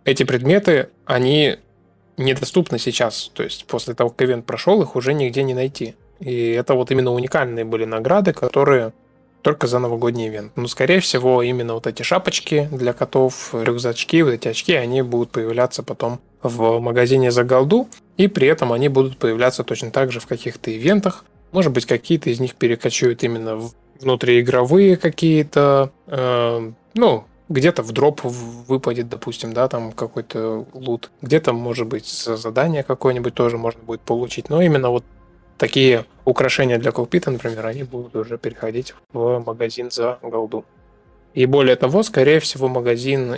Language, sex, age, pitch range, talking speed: Russian, male, 20-39, 120-140 Hz, 155 wpm